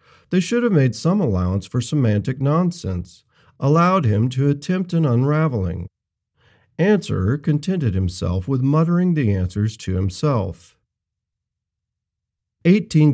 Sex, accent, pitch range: male, American, 100-150 Hz